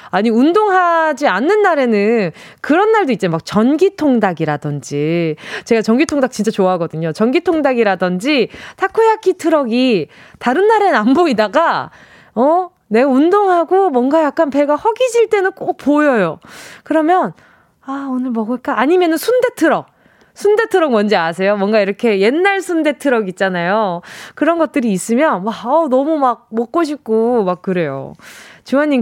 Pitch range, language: 215-320 Hz, Korean